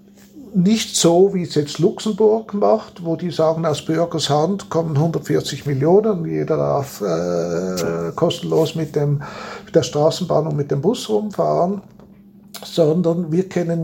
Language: German